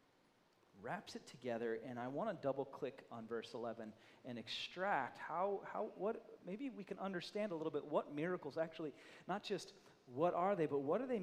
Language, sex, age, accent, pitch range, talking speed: English, male, 40-59, American, 120-160 Hz, 190 wpm